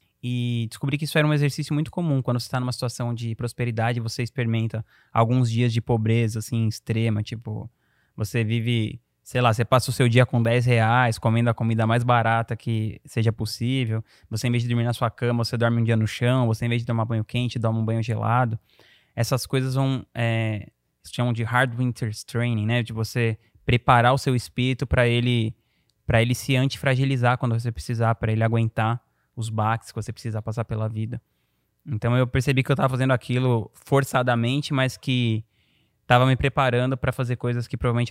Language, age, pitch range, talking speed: Portuguese, 20-39, 110-125 Hz, 195 wpm